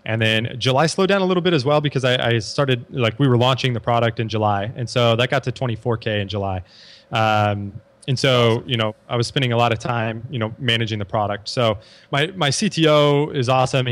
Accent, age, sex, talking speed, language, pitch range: American, 20-39, male, 230 wpm, English, 110-130 Hz